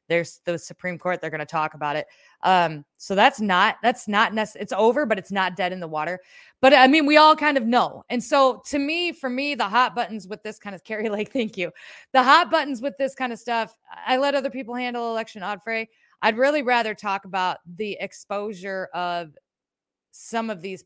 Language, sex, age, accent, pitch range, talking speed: English, female, 30-49, American, 180-260 Hz, 215 wpm